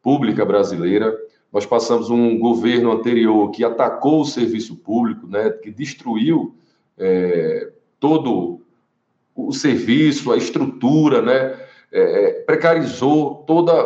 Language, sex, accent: Portuguese, male, Brazilian